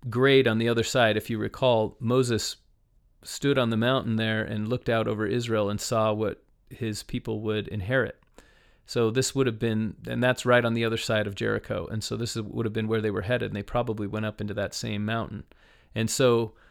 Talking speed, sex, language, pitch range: 220 wpm, male, English, 110-130 Hz